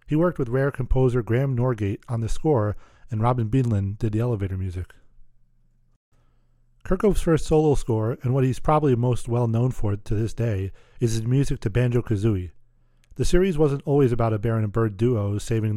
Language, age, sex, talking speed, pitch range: English, 40-59, male, 180 wpm, 110-130 Hz